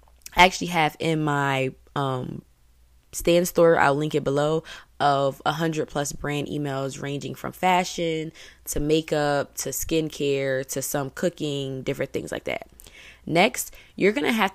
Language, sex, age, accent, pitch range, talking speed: English, female, 20-39, American, 145-165 Hz, 150 wpm